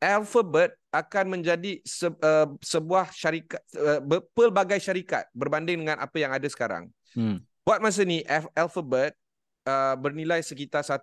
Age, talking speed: 30-49, 115 wpm